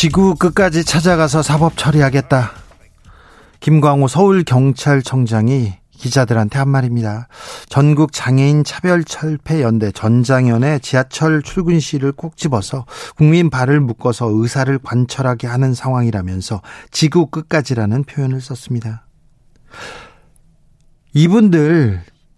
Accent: native